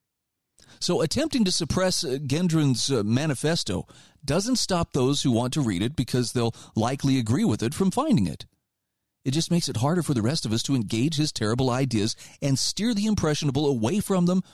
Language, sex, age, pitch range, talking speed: English, male, 40-59, 115-145 Hz, 190 wpm